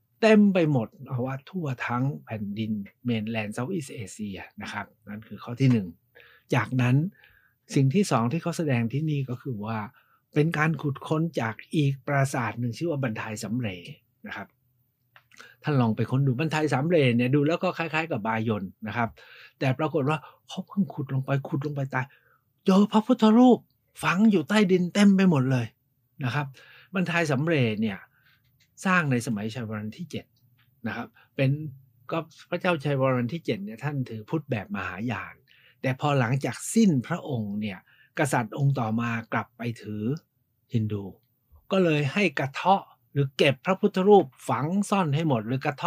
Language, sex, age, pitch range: Thai, male, 60-79, 120-165 Hz